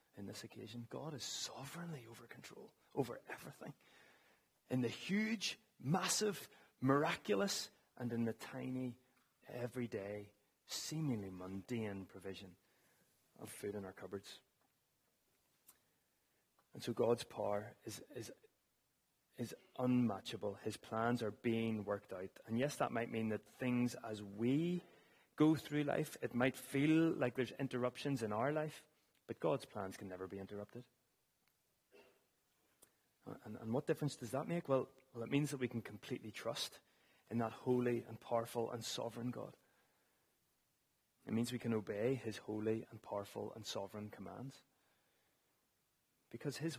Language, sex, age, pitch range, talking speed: English, male, 30-49, 110-140 Hz, 140 wpm